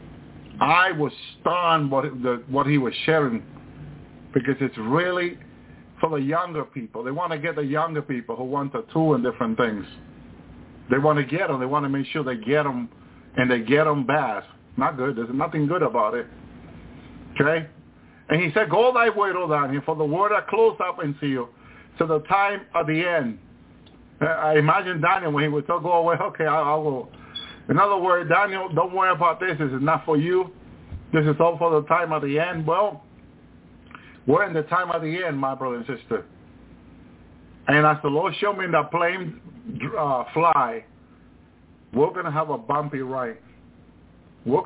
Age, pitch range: 50-69, 125-165 Hz